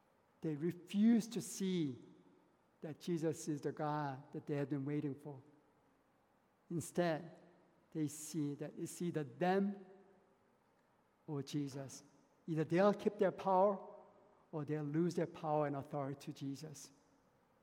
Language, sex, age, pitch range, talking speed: English, male, 60-79, 150-190 Hz, 130 wpm